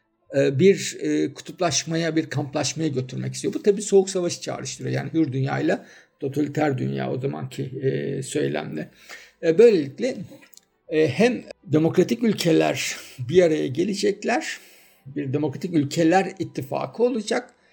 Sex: male